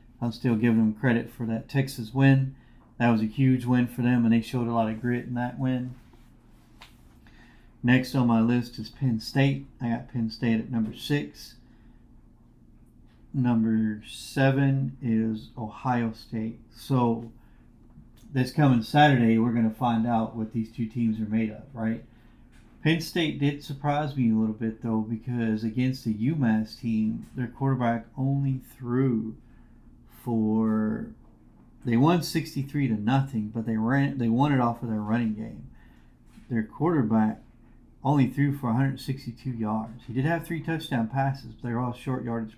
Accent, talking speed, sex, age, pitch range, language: American, 165 wpm, male, 40-59, 115-130 Hz, English